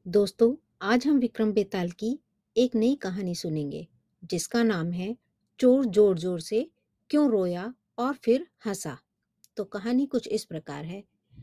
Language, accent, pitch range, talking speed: Hindi, native, 195-250 Hz, 145 wpm